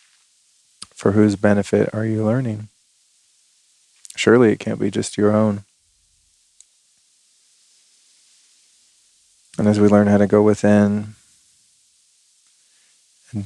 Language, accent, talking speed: English, American, 100 wpm